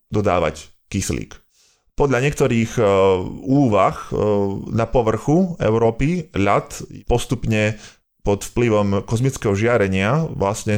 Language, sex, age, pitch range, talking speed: Slovak, male, 20-39, 100-120 Hz, 85 wpm